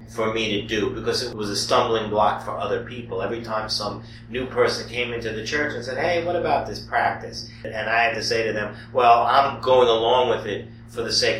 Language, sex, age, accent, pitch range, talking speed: English, male, 40-59, American, 115-135 Hz, 235 wpm